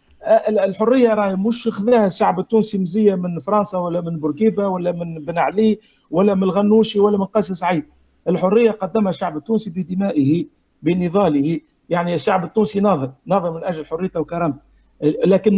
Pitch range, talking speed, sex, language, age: 175-220 Hz, 150 wpm, male, Arabic, 50-69